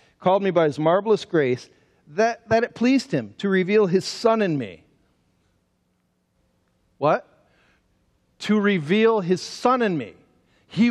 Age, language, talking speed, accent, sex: 40-59, English, 140 wpm, American, male